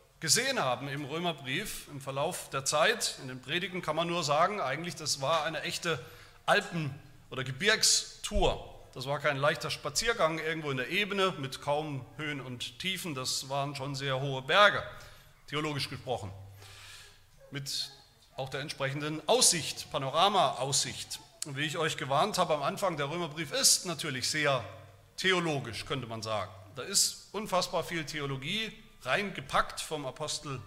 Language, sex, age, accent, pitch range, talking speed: German, male, 40-59, German, 130-165 Hz, 150 wpm